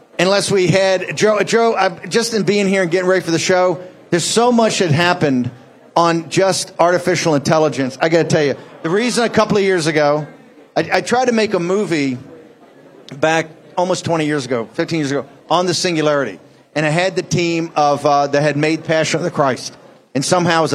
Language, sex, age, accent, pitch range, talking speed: English, male, 40-59, American, 155-195 Hz, 200 wpm